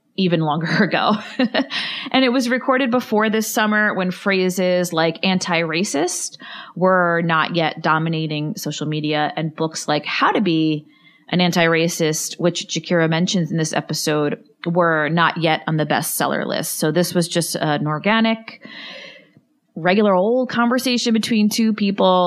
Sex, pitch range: female, 155-200 Hz